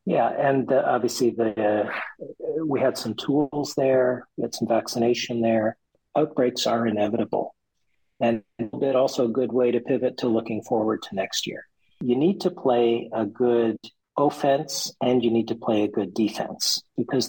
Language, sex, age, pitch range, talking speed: English, male, 50-69, 115-130 Hz, 165 wpm